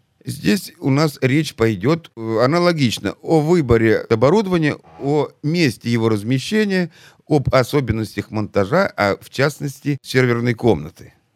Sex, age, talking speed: male, 50-69, 110 wpm